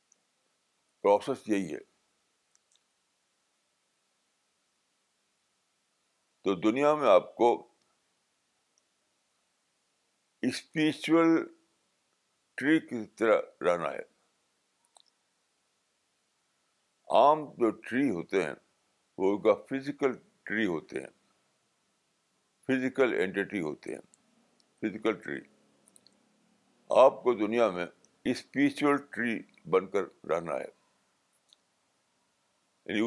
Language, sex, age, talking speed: Urdu, male, 60-79, 75 wpm